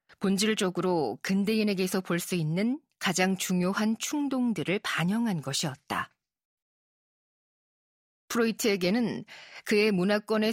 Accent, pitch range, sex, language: native, 185-230 Hz, female, Korean